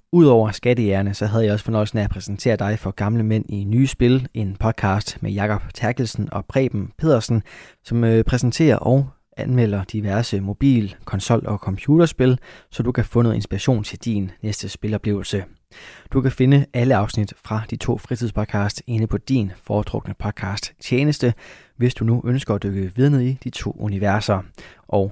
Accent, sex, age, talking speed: native, male, 20-39, 170 wpm